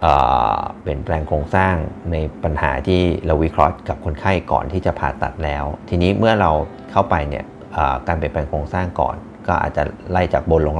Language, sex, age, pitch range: Thai, male, 30-49, 75-95 Hz